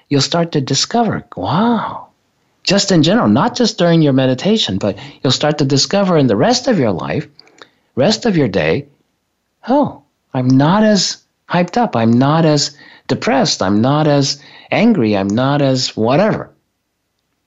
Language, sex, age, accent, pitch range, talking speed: English, male, 50-69, American, 130-190 Hz, 160 wpm